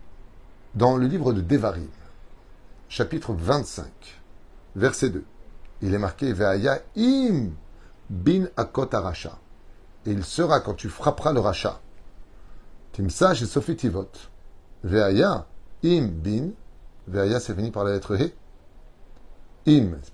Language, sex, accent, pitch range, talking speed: French, male, French, 95-125 Hz, 125 wpm